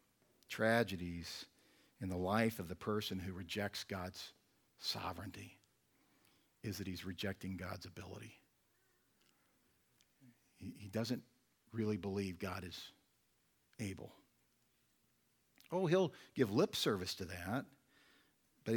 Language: English